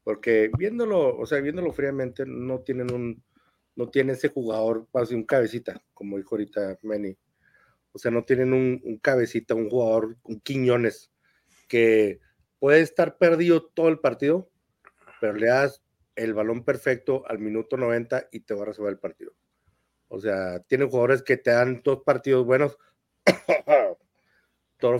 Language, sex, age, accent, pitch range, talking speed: Spanish, male, 50-69, Mexican, 110-130 Hz, 160 wpm